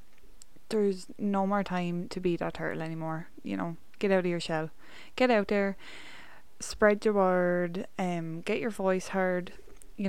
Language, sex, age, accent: English, female, 20-39, Irish